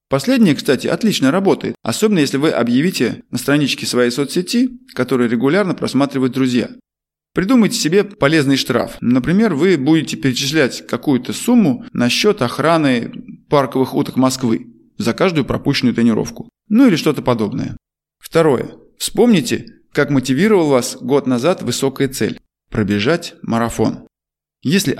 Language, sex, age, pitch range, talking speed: Russian, male, 20-39, 125-190 Hz, 125 wpm